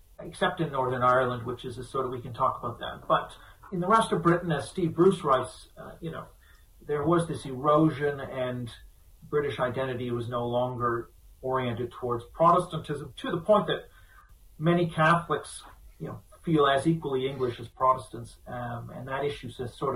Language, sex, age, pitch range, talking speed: English, male, 40-59, 125-180 Hz, 180 wpm